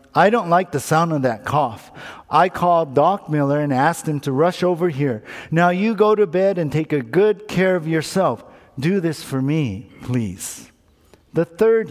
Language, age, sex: English, 50-69, male